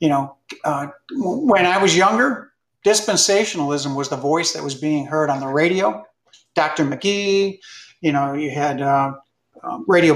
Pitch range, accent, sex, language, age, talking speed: 145-185 Hz, American, male, English, 50-69, 160 wpm